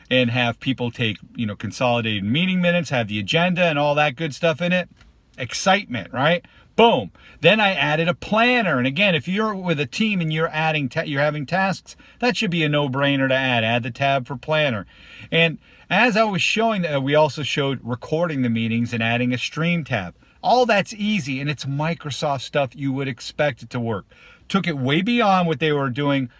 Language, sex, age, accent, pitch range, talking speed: English, male, 50-69, American, 125-165 Hz, 205 wpm